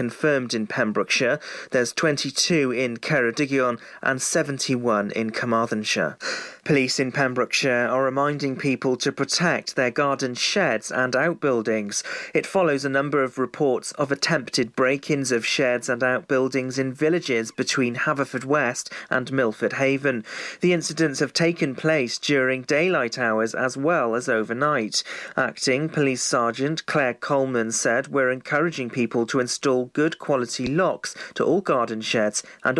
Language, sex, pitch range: English, male, 125-150 Hz